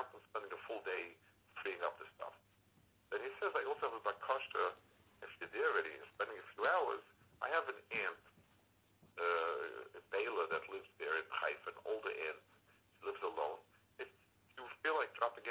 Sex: male